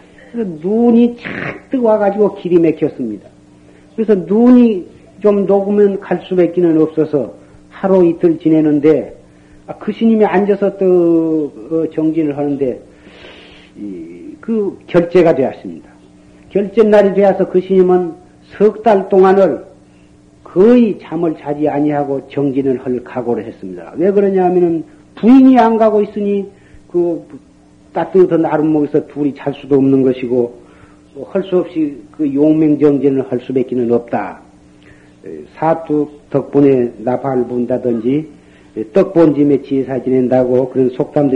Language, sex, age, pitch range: Korean, male, 50-69, 130-190 Hz